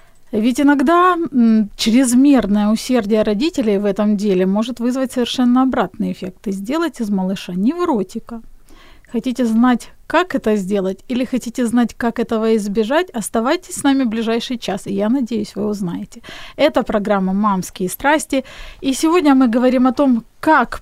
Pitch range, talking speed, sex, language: 215-265 Hz, 145 wpm, female, Ukrainian